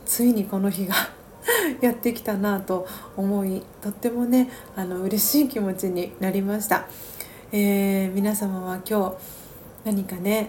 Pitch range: 190-230 Hz